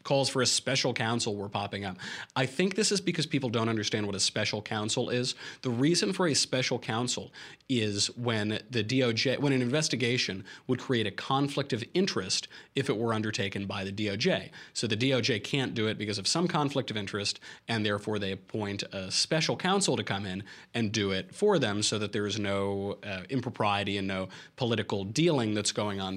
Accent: American